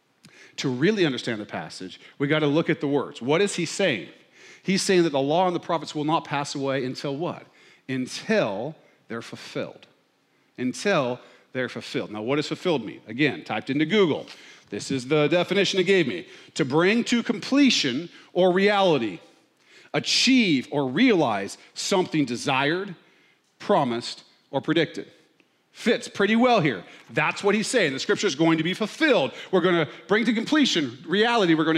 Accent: American